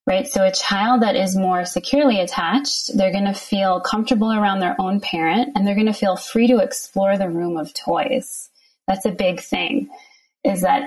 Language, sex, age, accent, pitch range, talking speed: English, female, 20-39, American, 195-265 Hz, 200 wpm